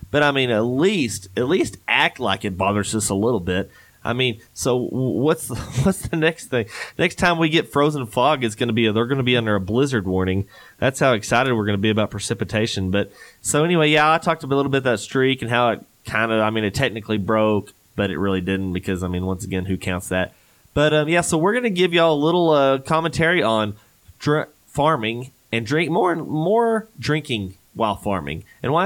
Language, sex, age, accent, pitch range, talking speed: English, male, 20-39, American, 105-145 Hz, 230 wpm